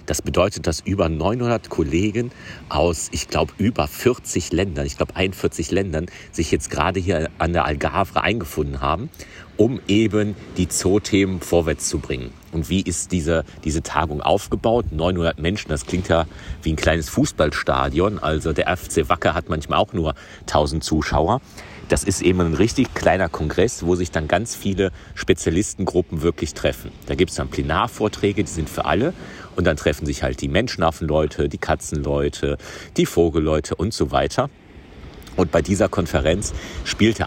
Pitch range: 80-95 Hz